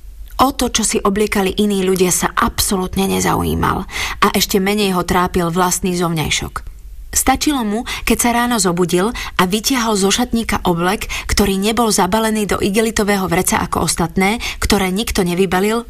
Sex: female